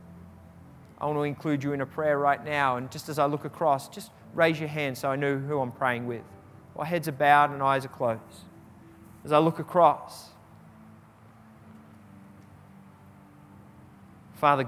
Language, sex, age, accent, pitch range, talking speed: English, male, 30-49, Australian, 110-155 Hz, 170 wpm